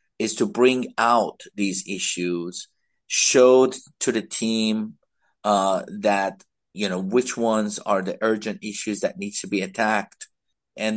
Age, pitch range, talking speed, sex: 50-69, 95-115 Hz, 140 wpm, male